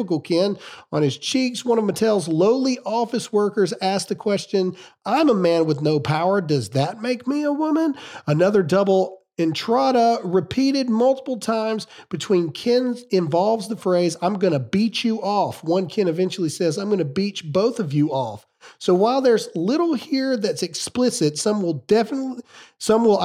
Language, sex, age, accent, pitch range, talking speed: English, male, 40-59, American, 170-235 Hz, 170 wpm